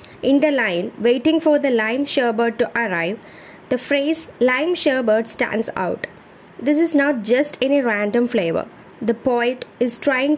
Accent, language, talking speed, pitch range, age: Indian, English, 155 wpm, 230-285 Hz, 20-39